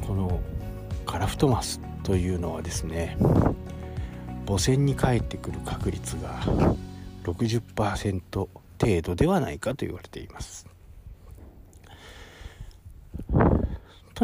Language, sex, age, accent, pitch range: Japanese, male, 60-79, native, 85-105 Hz